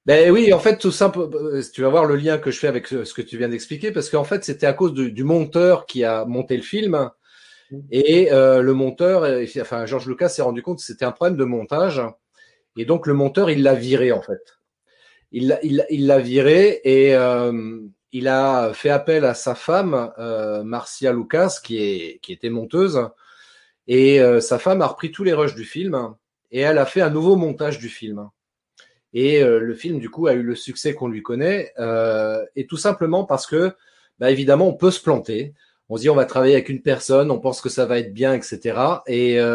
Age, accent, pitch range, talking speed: 30-49, French, 120-165 Hz, 220 wpm